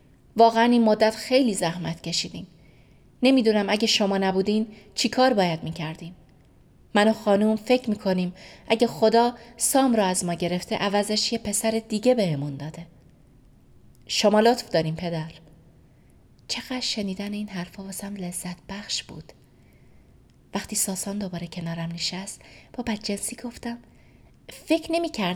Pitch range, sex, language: 180-235 Hz, female, Persian